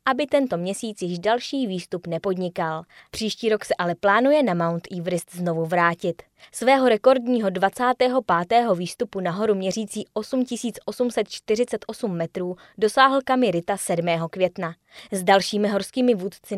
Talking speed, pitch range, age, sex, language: 120 wpm, 180-235 Hz, 20-39, female, Czech